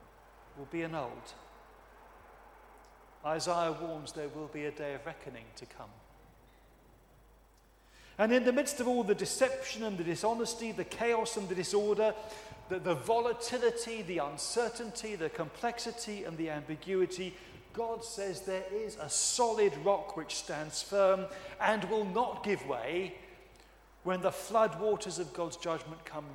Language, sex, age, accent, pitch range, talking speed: English, male, 40-59, British, 160-215 Hz, 145 wpm